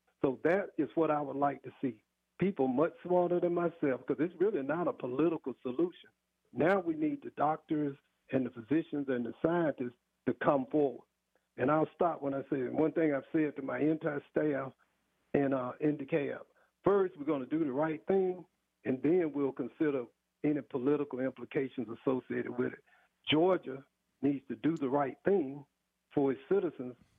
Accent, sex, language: American, male, English